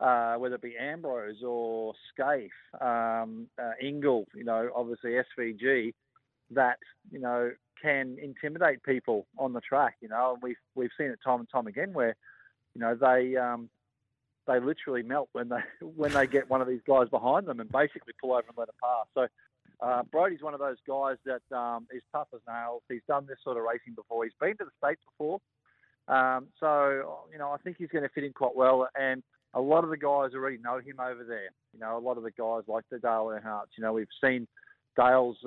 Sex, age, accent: male, 40-59, Australian